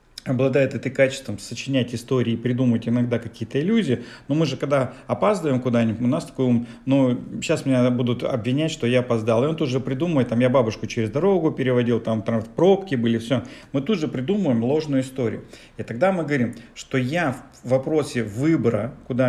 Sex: male